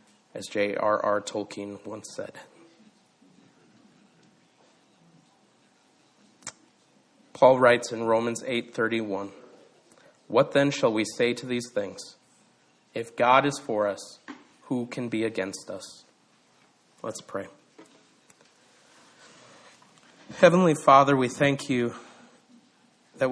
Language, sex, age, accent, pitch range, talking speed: English, male, 30-49, American, 115-140 Hz, 95 wpm